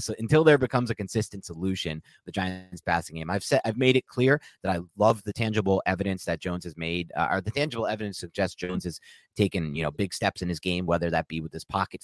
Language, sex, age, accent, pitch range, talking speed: English, male, 30-49, American, 90-115 Hz, 245 wpm